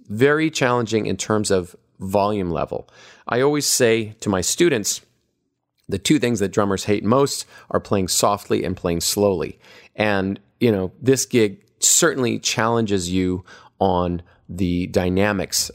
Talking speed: 140 wpm